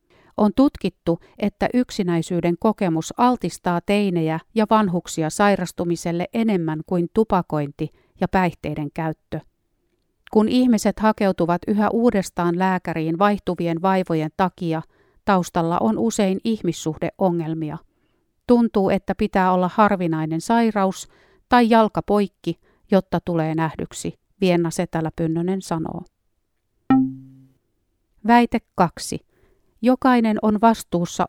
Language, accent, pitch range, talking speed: Finnish, native, 165-210 Hz, 90 wpm